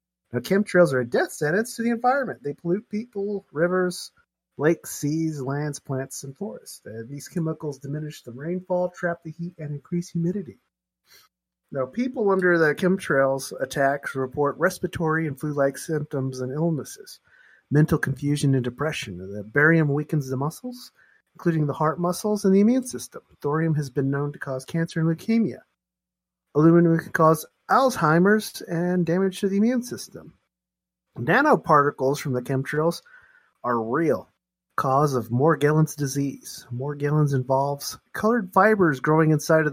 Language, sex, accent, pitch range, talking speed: English, male, American, 135-180 Hz, 145 wpm